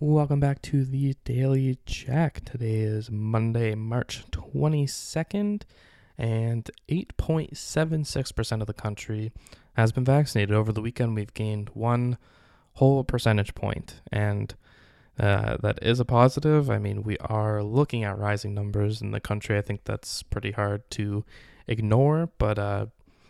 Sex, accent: male, American